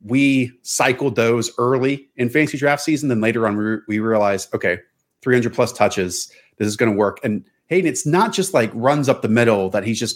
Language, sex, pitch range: English, male, 105-125 Hz